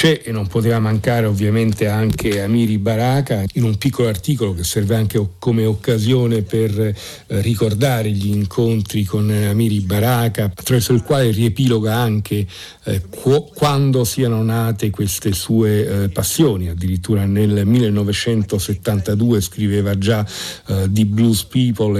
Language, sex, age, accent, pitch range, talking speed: Italian, male, 50-69, native, 100-115 Hz, 130 wpm